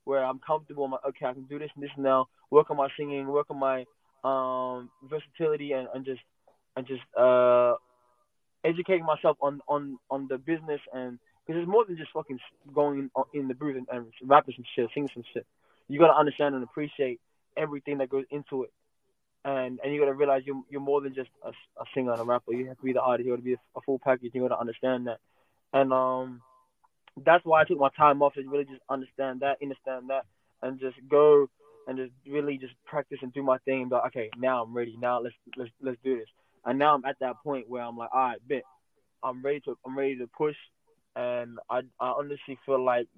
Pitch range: 120-140 Hz